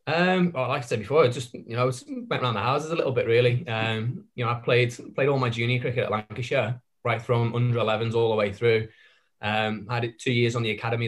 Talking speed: 255 wpm